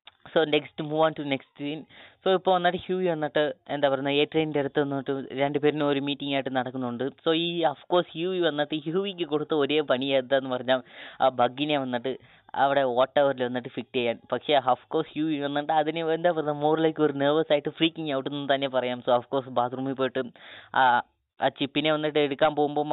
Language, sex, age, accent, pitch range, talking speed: Malayalam, female, 20-39, native, 135-155 Hz, 205 wpm